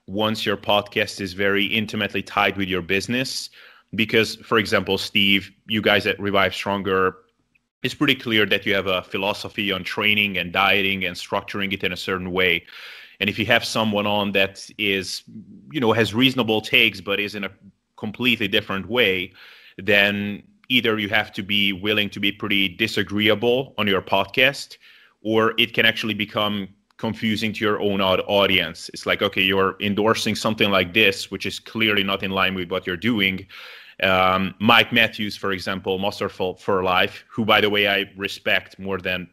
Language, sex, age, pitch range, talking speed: English, male, 30-49, 95-115 Hz, 175 wpm